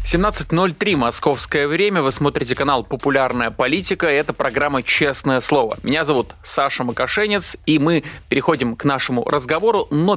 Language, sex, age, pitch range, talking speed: Russian, male, 20-39, 135-175 Hz, 135 wpm